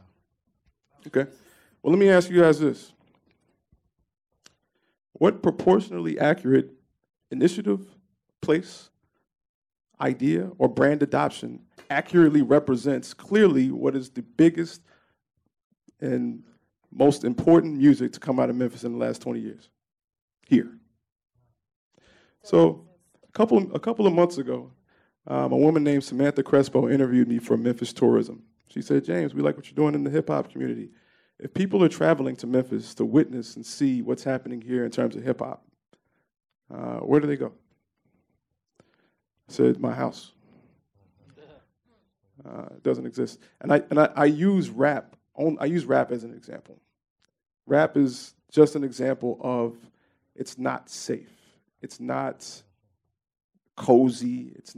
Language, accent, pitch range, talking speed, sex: English, American, 100-150 Hz, 140 wpm, male